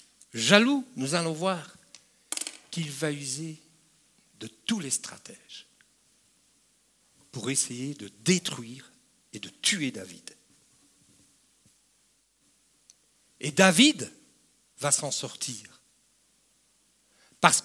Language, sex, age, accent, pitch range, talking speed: French, male, 60-79, French, 165-240 Hz, 85 wpm